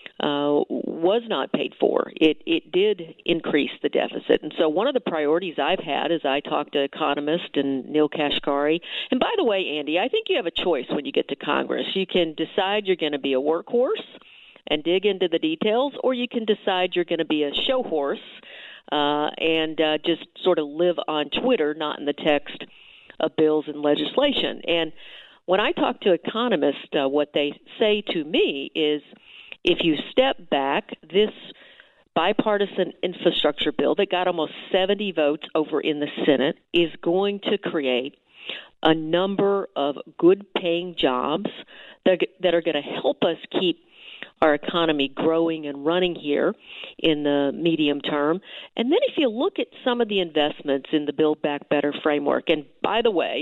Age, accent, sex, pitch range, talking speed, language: 50-69, American, female, 150-195 Hz, 180 wpm, English